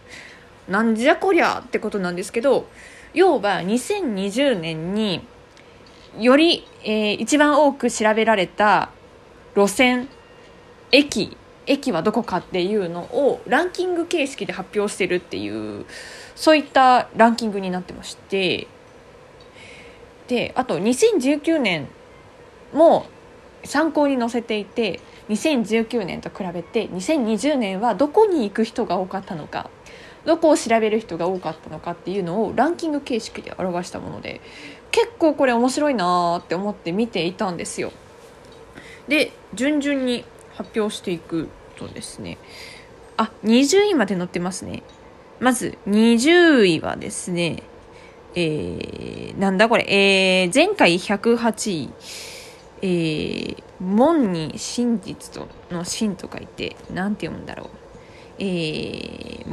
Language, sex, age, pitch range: Japanese, female, 20-39, 195-300 Hz